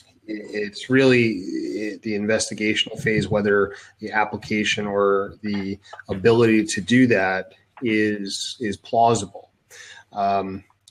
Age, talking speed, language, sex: 30-49, 100 wpm, English, male